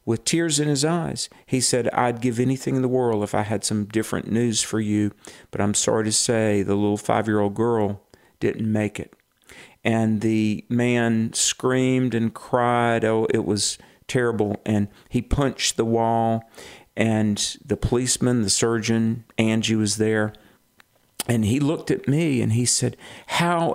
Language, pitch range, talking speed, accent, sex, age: English, 110-130 Hz, 165 wpm, American, male, 50-69